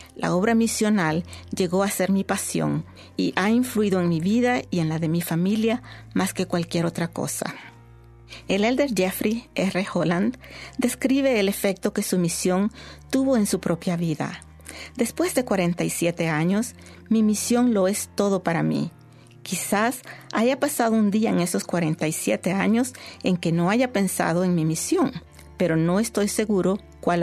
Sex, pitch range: female, 170-225 Hz